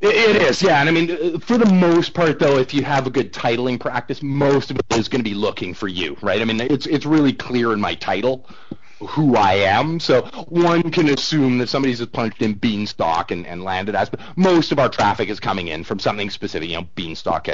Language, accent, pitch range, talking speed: English, American, 105-145 Hz, 235 wpm